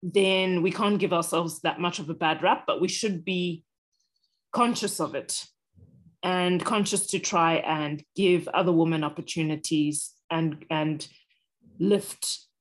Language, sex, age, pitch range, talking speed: English, female, 30-49, 165-195 Hz, 145 wpm